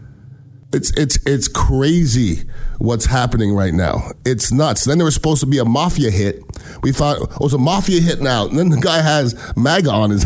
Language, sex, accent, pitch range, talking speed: English, male, American, 100-130 Hz, 210 wpm